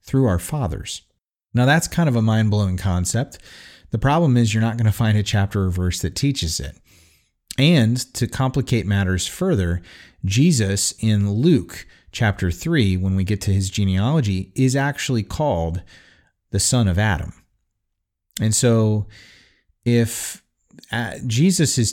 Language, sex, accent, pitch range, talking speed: English, male, American, 95-120 Hz, 145 wpm